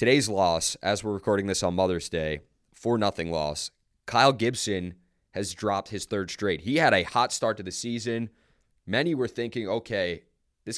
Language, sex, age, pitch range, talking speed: English, male, 20-39, 90-115 Hz, 180 wpm